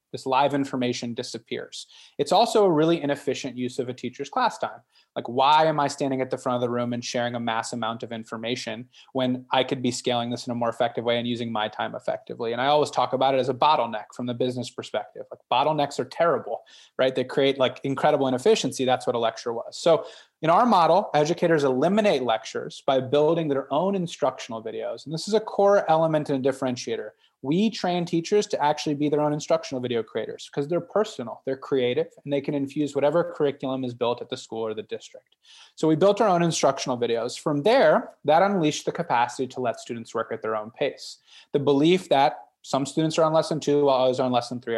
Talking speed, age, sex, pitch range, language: 220 wpm, 30-49, male, 125-165 Hz, English